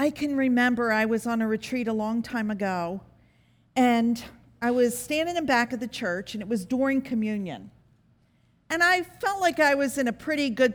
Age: 50-69